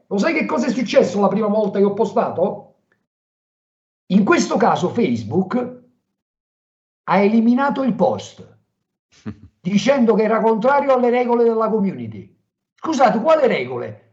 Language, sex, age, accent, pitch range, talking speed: Italian, male, 50-69, native, 200-265 Hz, 130 wpm